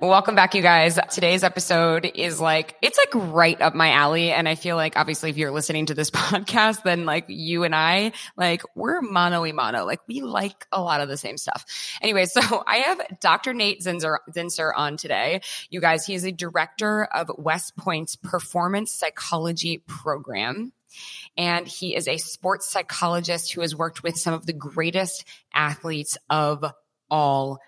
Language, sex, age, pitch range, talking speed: English, female, 20-39, 155-185 Hz, 175 wpm